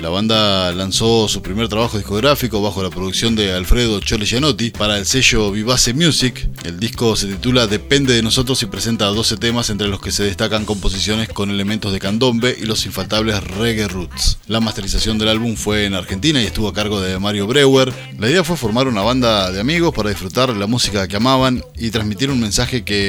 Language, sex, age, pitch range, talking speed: Spanish, male, 20-39, 105-130 Hz, 200 wpm